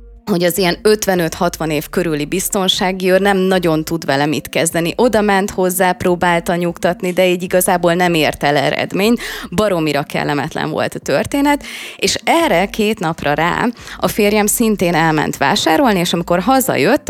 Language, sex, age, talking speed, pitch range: Hungarian, female, 20-39, 150 wpm, 155-205 Hz